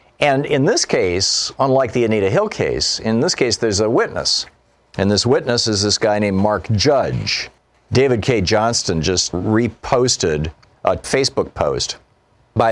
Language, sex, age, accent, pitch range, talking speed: English, male, 50-69, American, 95-120 Hz, 155 wpm